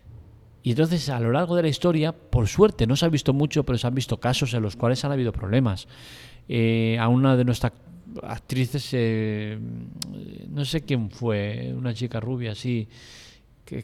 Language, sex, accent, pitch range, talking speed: Spanish, male, Spanish, 110-130 Hz, 180 wpm